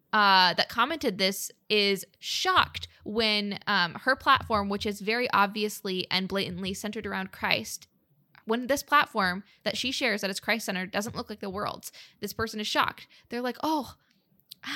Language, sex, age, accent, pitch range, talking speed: English, female, 10-29, American, 195-235 Hz, 165 wpm